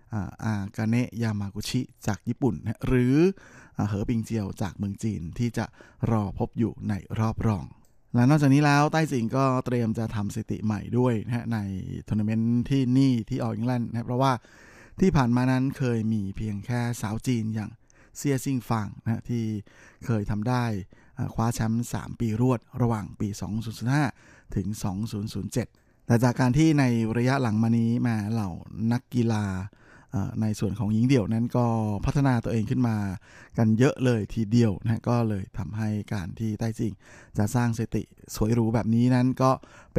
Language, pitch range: Thai, 110-125 Hz